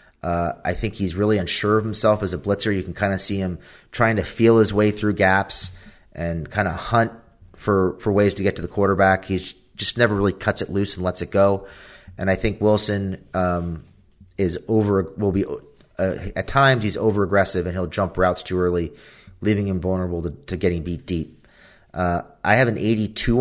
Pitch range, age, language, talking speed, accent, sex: 90-105 Hz, 30-49, English, 210 wpm, American, male